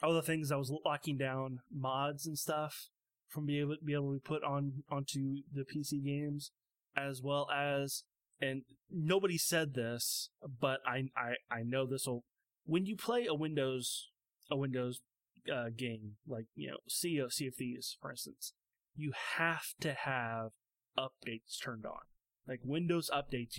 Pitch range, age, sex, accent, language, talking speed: 130-150 Hz, 20-39, male, American, English, 170 wpm